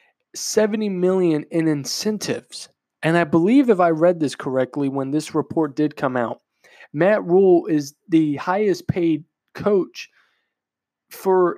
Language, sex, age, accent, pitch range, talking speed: English, male, 20-39, American, 150-175 Hz, 130 wpm